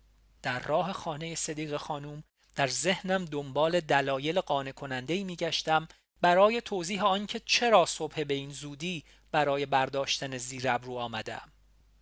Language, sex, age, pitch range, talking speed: Persian, male, 40-59, 155-210 Hz, 125 wpm